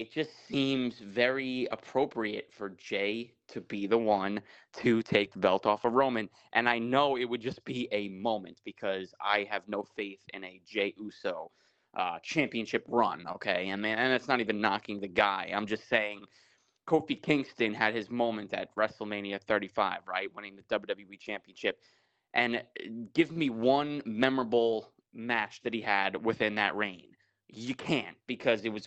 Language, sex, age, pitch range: English, male, 20-39, 105-125 Hz